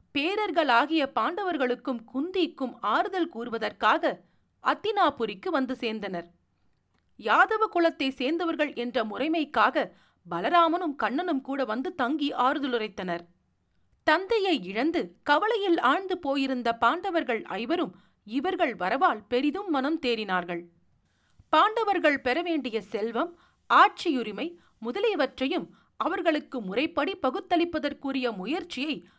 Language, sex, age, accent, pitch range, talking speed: Tamil, female, 40-59, native, 235-335 Hz, 85 wpm